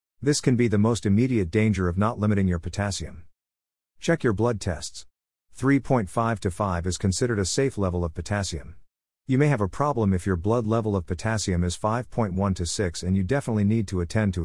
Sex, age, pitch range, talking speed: male, 50-69, 90-110 Hz, 200 wpm